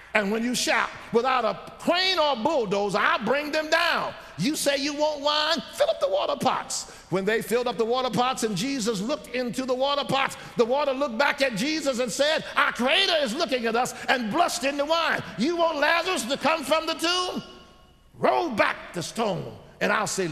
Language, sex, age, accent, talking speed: English, male, 50-69, American, 210 wpm